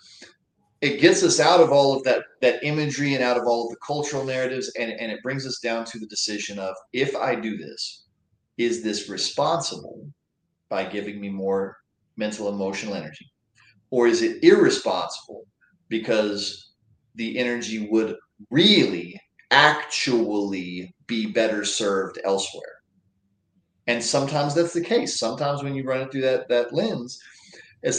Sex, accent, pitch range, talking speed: male, American, 105-140 Hz, 150 wpm